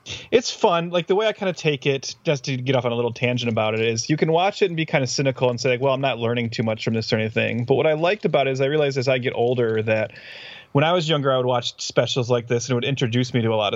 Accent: American